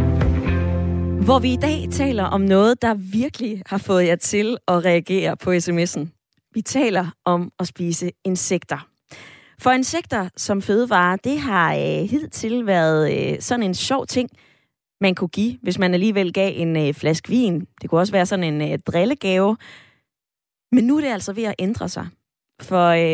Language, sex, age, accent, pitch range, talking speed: Danish, female, 20-39, native, 175-235 Hz, 175 wpm